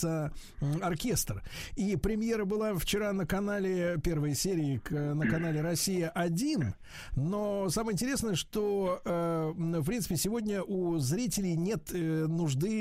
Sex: male